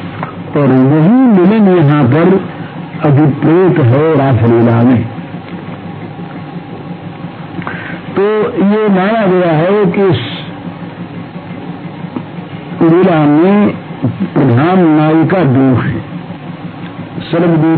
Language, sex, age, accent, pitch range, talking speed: Hindi, male, 60-79, native, 135-175 Hz, 70 wpm